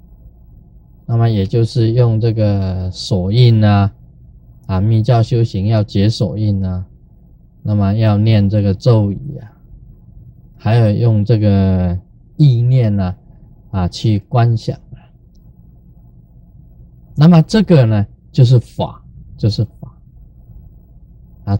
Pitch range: 100-135 Hz